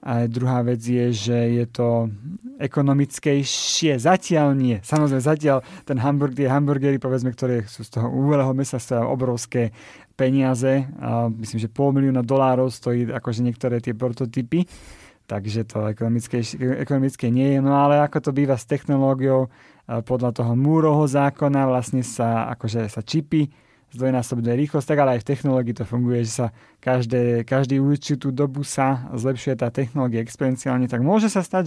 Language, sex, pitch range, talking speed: Slovak, male, 120-145 Hz, 150 wpm